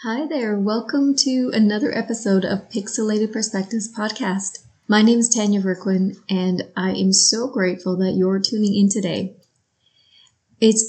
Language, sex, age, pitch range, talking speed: English, female, 30-49, 190-225 Hz, 145 wpm